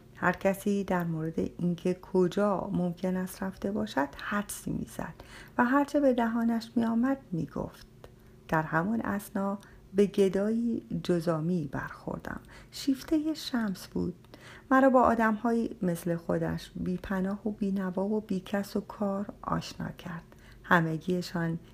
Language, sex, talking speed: Persian, female, 120 wpm